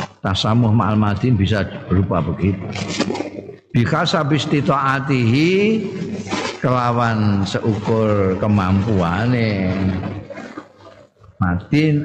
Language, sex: Indonesian, male